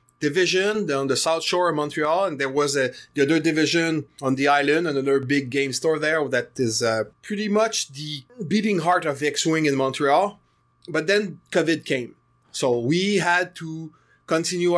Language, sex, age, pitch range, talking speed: English, male, 30-49, 135-165 Hz, 170 wpm